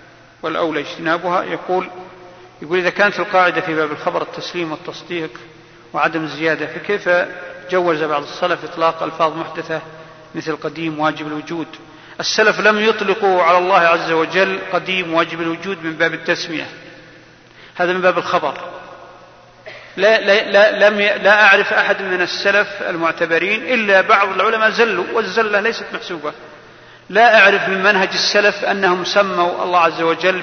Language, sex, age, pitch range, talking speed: Arabic, male, 40-59, 165-200 Hz, 135 wpm